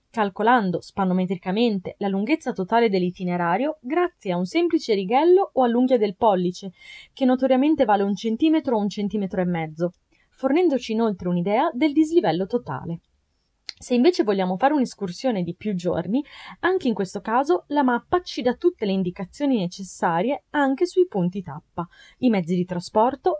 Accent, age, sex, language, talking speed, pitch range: native, 20-39, female, Italian, 150 wpm, 185-285 Hz